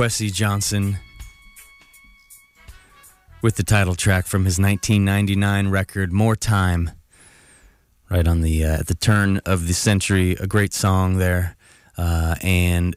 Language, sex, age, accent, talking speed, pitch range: English, male, 20-39, American, 130 wpm, 85-100 Hz